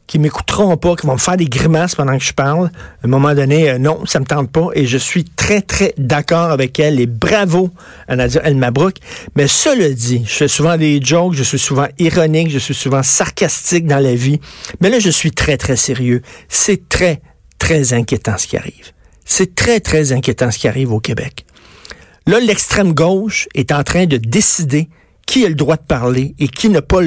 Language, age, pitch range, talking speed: French, 50-69, 130-180 Hz, 215 wpm